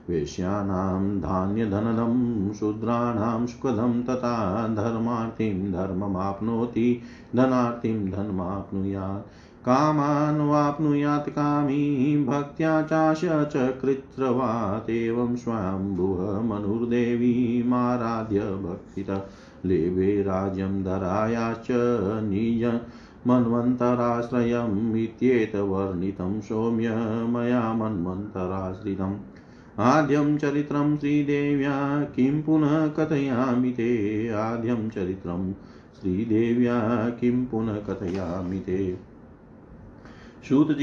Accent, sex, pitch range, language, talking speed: native, male, 105-130 Hz, Hindi, 55 wpm